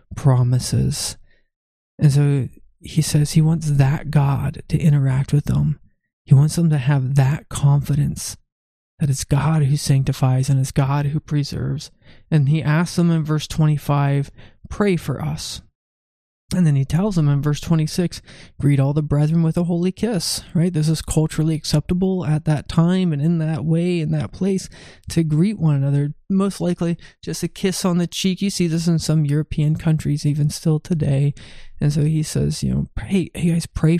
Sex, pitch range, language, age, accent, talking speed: male, 145-170 Hz, English, 20-39, American, 180 wpm